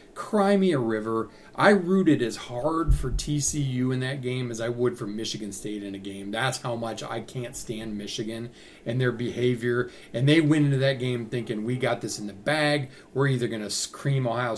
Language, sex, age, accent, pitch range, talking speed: English, male, 40-59, American, 115-150 Hz, 210 wpm